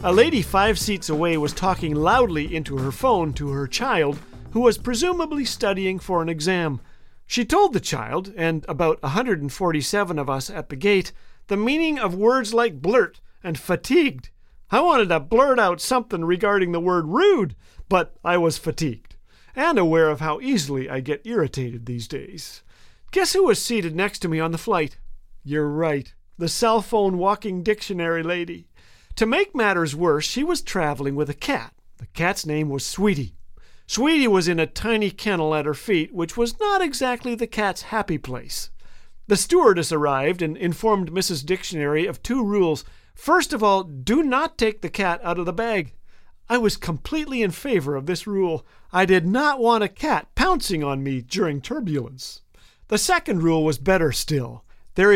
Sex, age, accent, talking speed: male, 50-69, American, 175 wpm